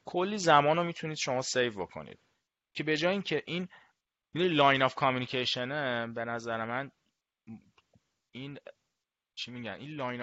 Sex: male